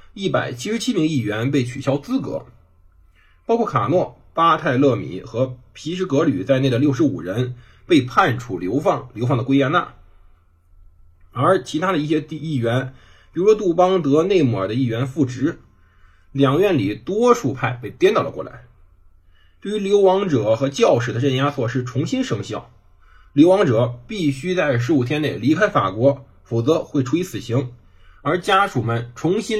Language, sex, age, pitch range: Chinese, male, 20-39, 110-160 Hz